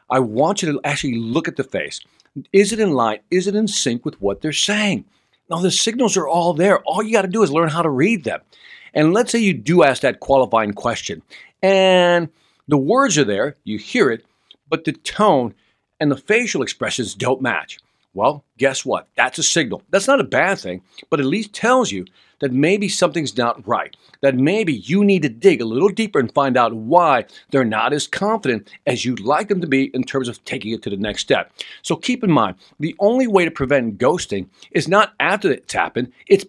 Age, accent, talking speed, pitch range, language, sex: 50-69, American, 215 wpm, 130-195 Hz, English, male